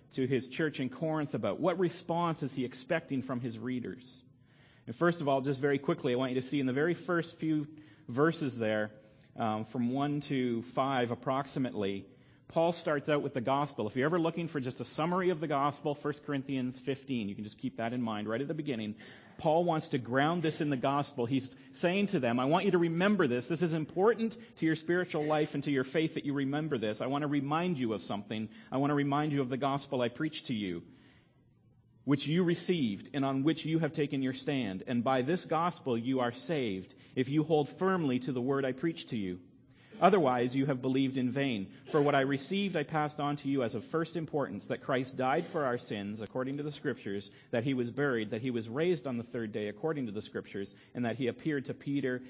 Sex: male